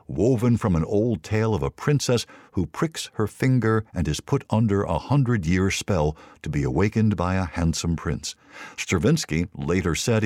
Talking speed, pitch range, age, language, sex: 170 wpm, 85-115 Hz, 60-79, English, male